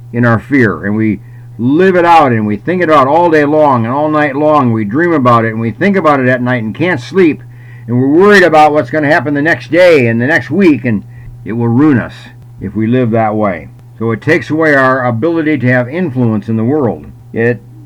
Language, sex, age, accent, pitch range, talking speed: English, male, 60-79, American, 120-150 Hz, 240 wpm